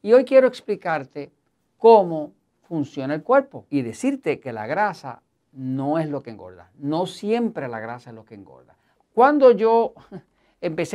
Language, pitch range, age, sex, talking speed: Spanish, 140-200 Hz, 50-69, male, 160 wpm